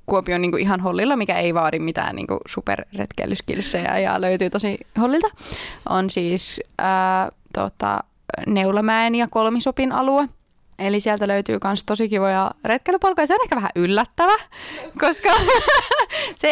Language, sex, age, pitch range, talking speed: Finnish, female, 20-39, 185-255 Hz, 135 wpm